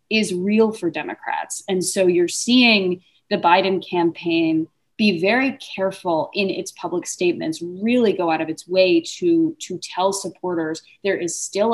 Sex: female